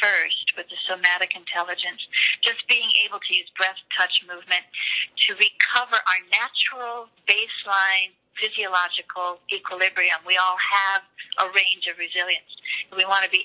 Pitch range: 180-235 Hz